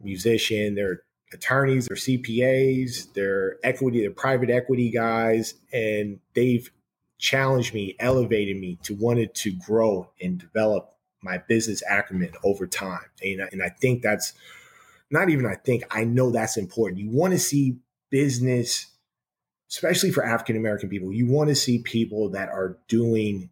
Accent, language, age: American, English, 30-49